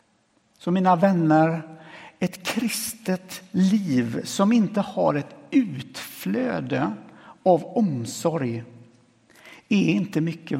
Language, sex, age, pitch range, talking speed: Swedish, male, 60-79, 145-220 Hz, 90 wpm